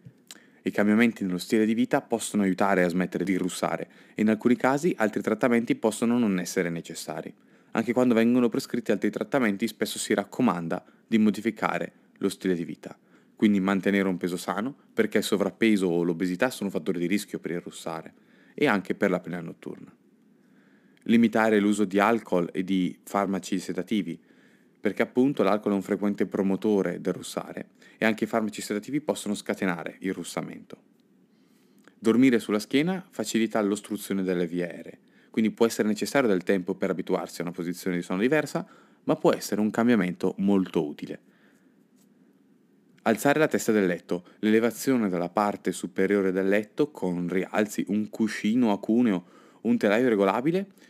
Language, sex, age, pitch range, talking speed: Italian, male, 20-39, 95-115 Hz, 160 wpm